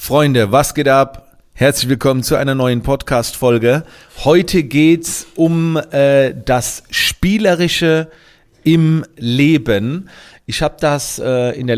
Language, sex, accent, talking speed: German, male, German, 125 wpm